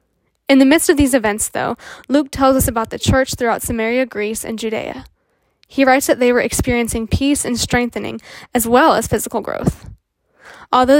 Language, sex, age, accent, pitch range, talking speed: English, female, 10-29, American, 225-270 Hz, 180 wpm